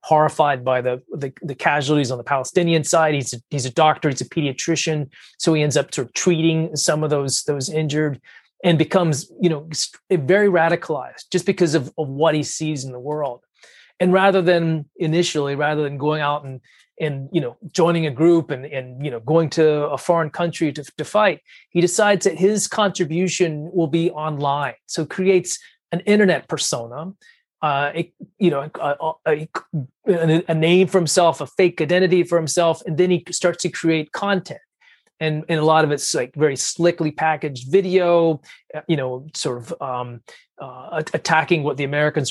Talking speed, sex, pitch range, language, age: 180 wpm, male, 145-175 Hz, English, 30-49